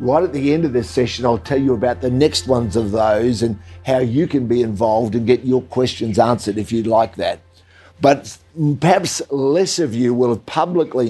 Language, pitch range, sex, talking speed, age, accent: English, 115-140 Hz, male, 205 wpm, 50-69, Australian